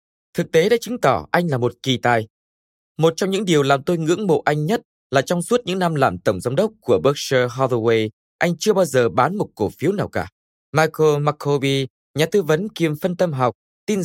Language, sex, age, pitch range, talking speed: Vietnamese, male, 20-39, 125-175 Hz, 220 wpm